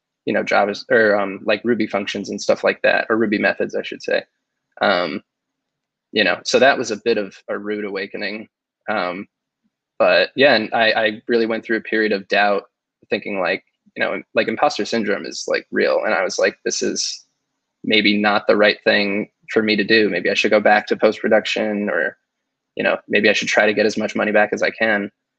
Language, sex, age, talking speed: English, male, 20-39, 215 wpm